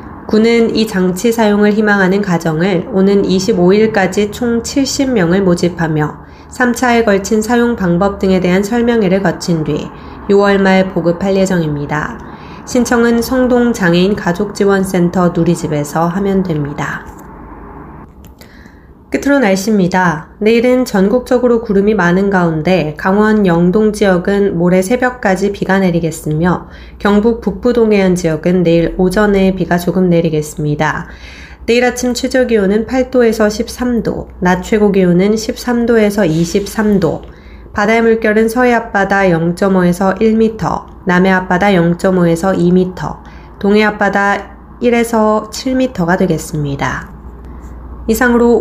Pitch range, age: 175-225 Hz, 20-39